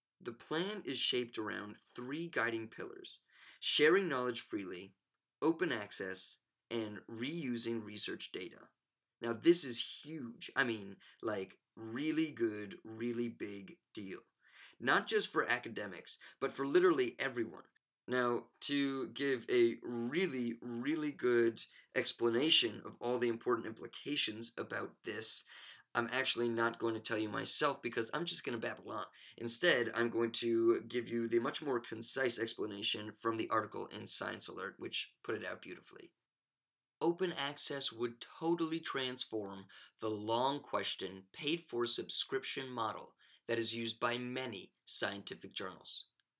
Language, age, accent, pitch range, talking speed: English, 20-39, American, 115-140 Hz, 135 wpm